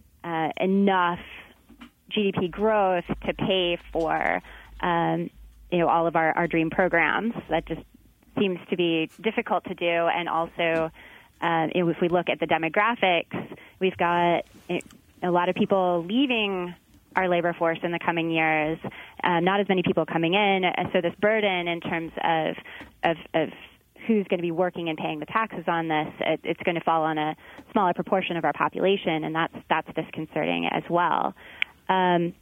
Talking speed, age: 170 wpm, 20-39